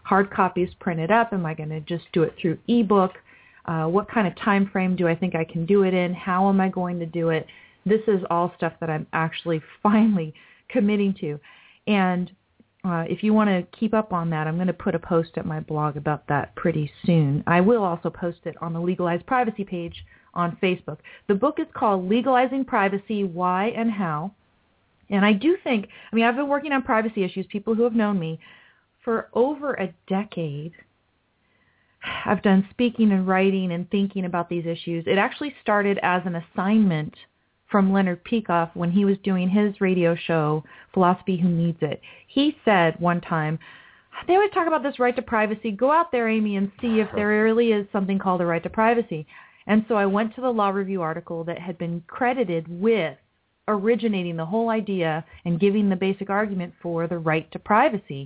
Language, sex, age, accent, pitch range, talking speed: English, female, 40-59, American, 170-215 Hz, 200 wpm